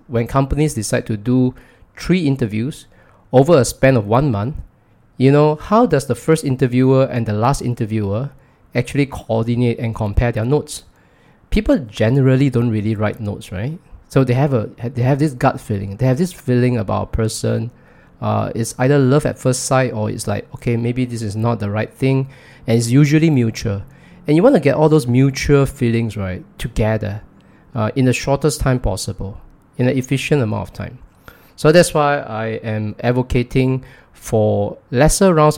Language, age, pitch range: English, 20-39, 110-135 Hz